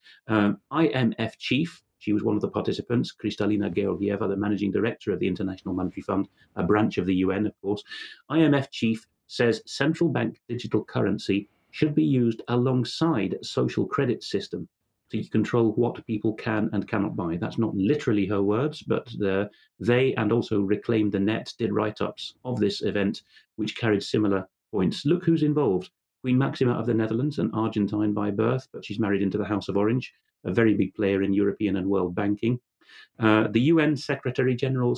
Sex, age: male, 40-59